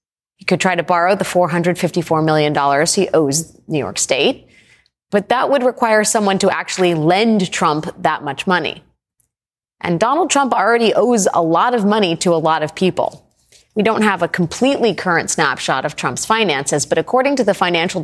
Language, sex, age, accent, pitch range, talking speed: English, female, 30-49, American, 155-205 Hz, 180 wpm